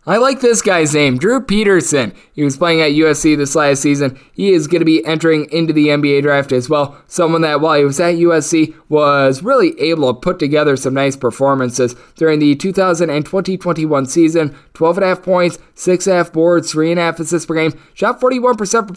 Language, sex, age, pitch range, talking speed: English, male, 20-39, 145-175 Hz, 180 wpm